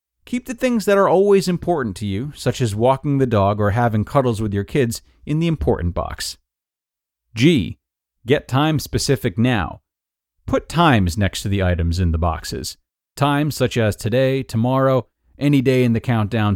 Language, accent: English, American